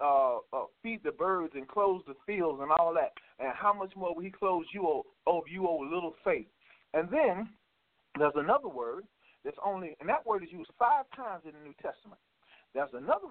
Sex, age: male, 50-69